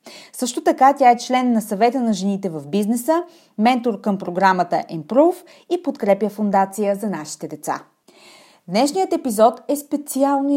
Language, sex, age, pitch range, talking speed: Bulgarian, female, 30-49, 190-275 Hz, 140 wpm